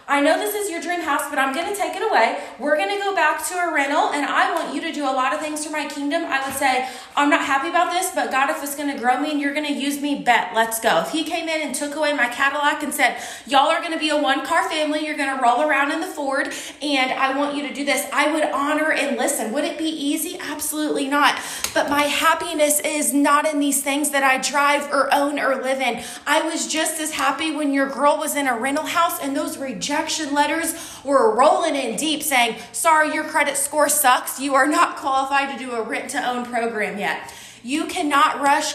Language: English